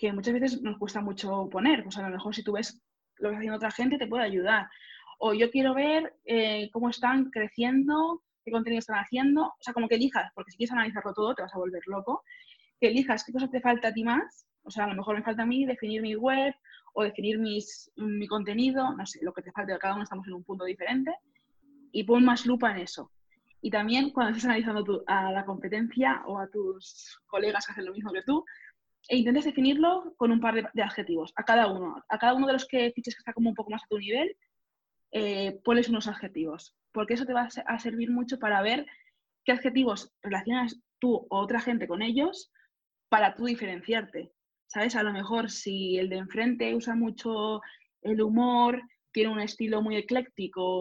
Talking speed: 220 wpm